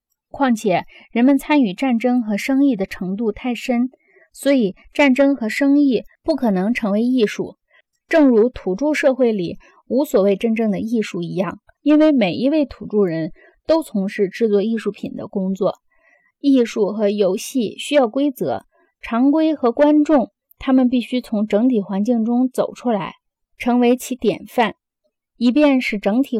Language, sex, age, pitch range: Chinese, female, 20-39, 205-275 Hz